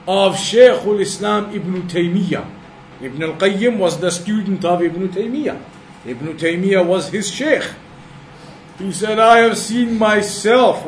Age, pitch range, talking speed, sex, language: 50-69, 165-210 Hz, 130 wpm, male, English